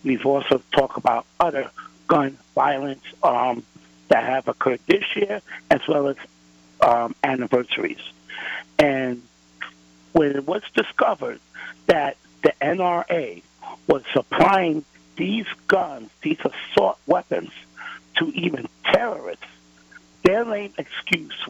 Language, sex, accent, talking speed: English, male, American, 110 wpm